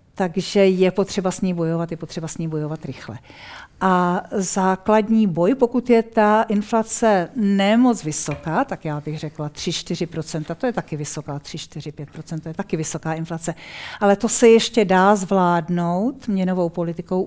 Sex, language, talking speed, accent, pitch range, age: female, Czech, 155 wpm, native, 165-195 Hz, 50-69